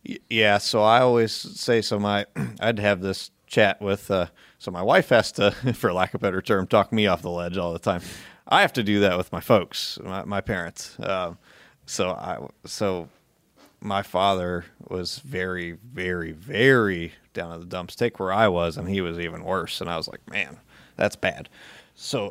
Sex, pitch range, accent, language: male, 90-115 Hz, American, English